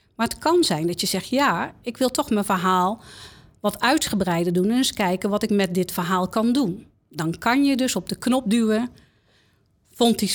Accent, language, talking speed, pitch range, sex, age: Dutch, Dutch, 205 wpm, 185-240 Hz, female, 50-69